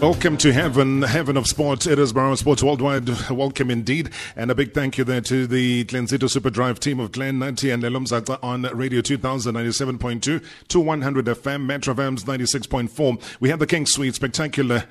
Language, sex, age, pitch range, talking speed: English, male, 30-49, 115-135 Hz, 215 wpm